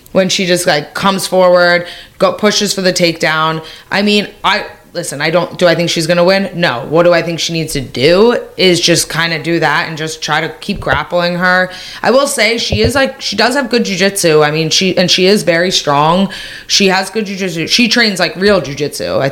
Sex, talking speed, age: female, 225 wpm, 20-39